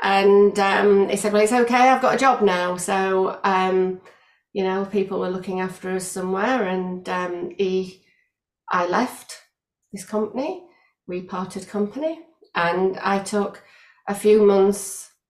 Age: 30-49